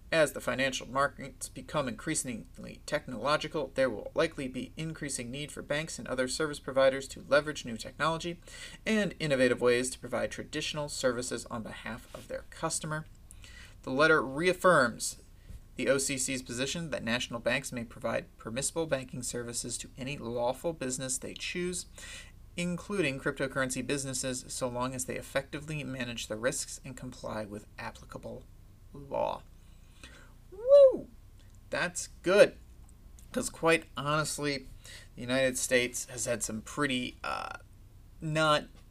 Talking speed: 130 wpm